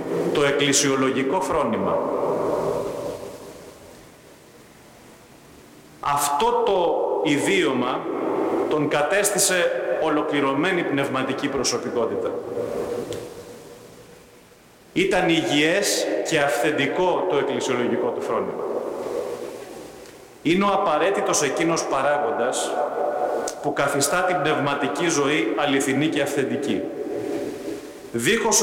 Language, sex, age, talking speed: Greek, male, 40-59, 70 wpm